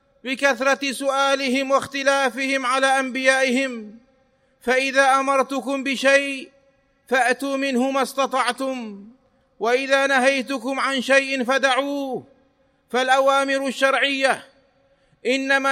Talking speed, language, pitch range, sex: 75 wpm, Arabic, 260-275 Hz, male